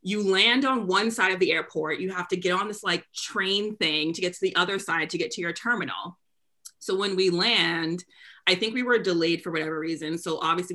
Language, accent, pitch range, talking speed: English, American, 160-195 Hz, 235 wpm